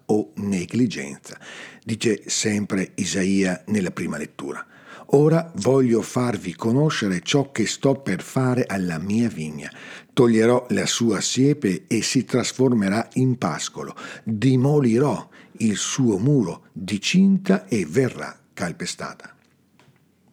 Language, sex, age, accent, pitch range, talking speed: Italian, male, 50-69, native, 100-145 Hz, 110 wpm